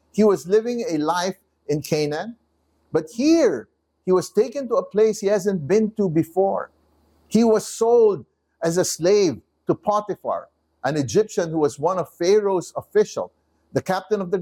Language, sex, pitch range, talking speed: English, male, 125-190 Hz, 165 wpm